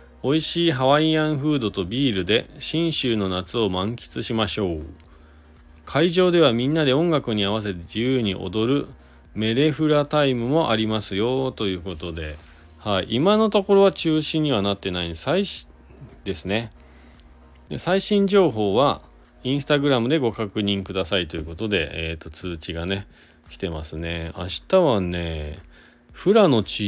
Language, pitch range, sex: Japanese, 80-130 Hz, male